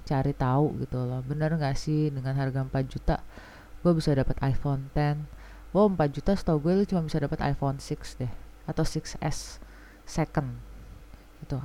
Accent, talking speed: native, 160 wpm